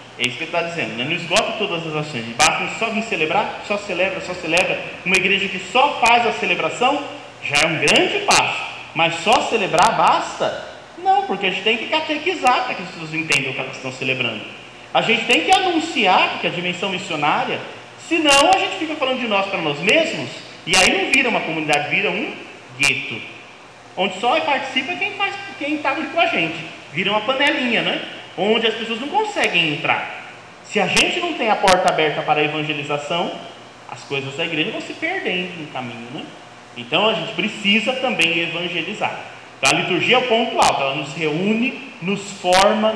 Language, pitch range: Portuguese, 155-235 Hz